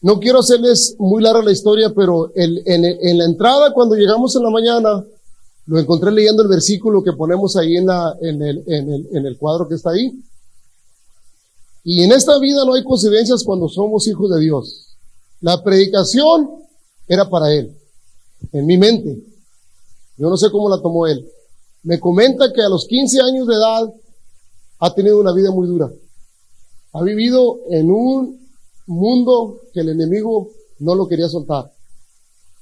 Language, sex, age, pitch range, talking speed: Spanish, male, 40-59, 160-225 Hz, 160 wpm